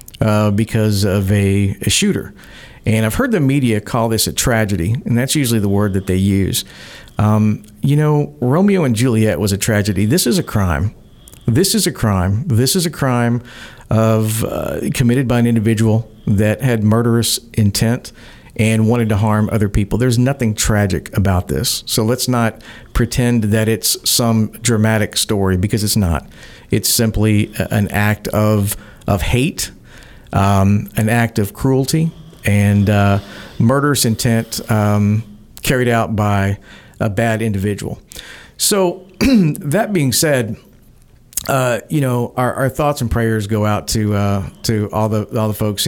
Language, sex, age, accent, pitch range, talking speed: English, male, 50-69, American, 105-120 Hz, 160 wpm